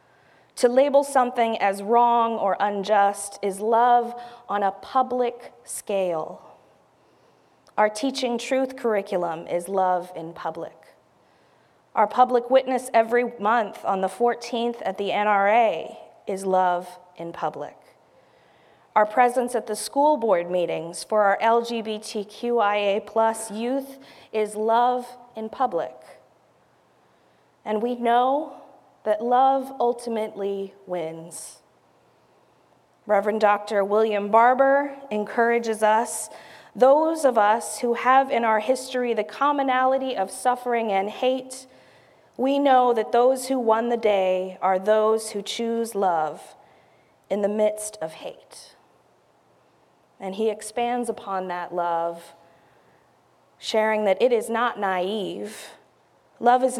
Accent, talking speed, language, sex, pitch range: American, 115 wpm, English, female, 200-245 Hz